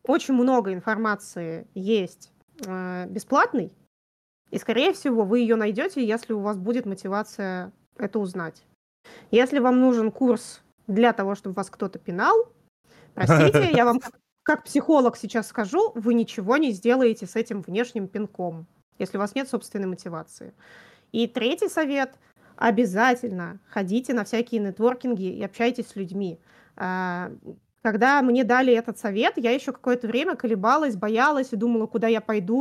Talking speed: 145 wpm